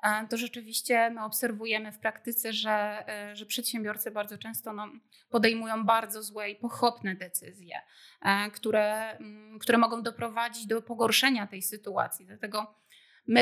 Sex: female